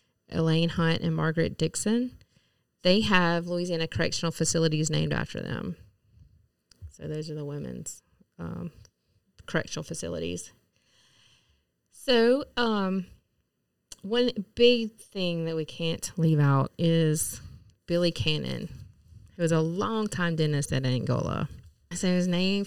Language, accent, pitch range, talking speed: English, American, 160-190 Hz, 115 wpm